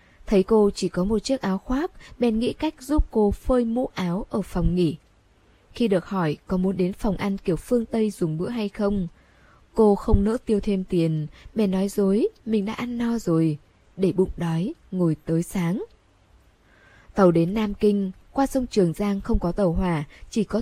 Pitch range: 175-220 Hz